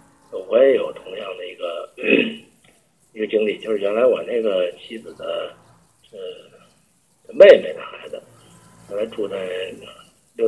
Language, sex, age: Chinese, male, 50-69